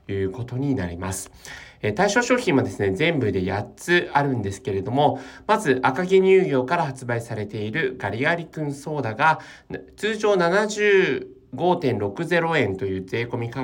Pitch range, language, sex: 120-175 Hz, Japanese, male